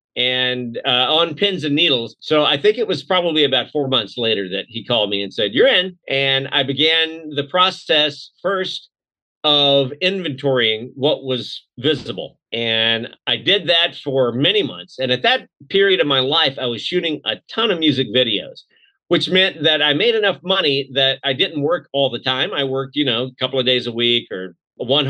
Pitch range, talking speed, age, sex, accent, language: 130-180 Hz, 200 wpm, 40-59, male, American, English